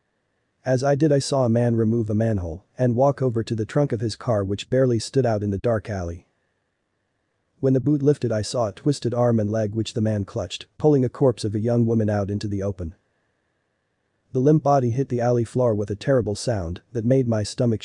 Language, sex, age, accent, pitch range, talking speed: English, male, 40-59, American, 105-130 Hz, 230 wpm